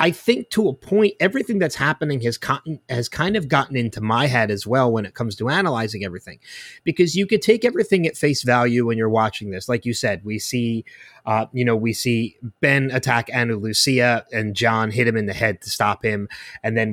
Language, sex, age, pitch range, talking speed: English, male, 20-39, 115-150 Hz, 225 wpm